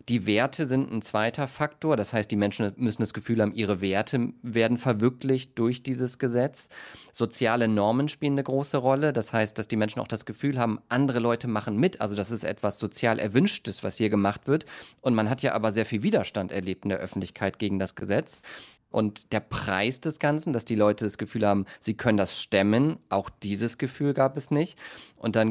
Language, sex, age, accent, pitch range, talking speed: German, male, 30-49, German, 110-130 Hz, 205 wpm